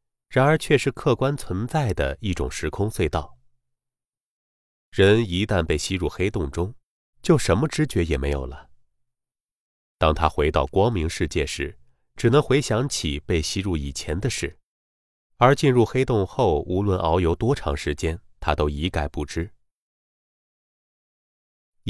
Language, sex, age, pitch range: Chinese, male, 30-49, 75-120 Hz